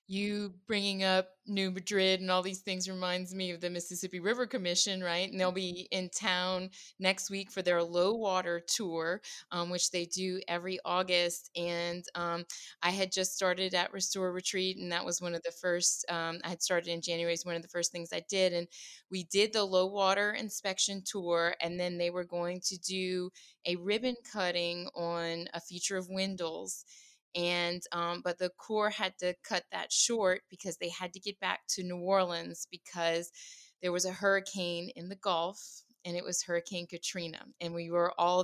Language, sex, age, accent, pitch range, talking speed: English, female, 20-39, American, 170-190 Hz, 195 wpm